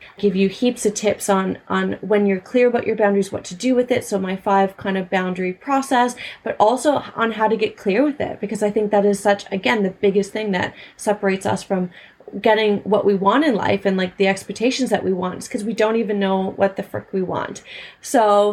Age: 30-49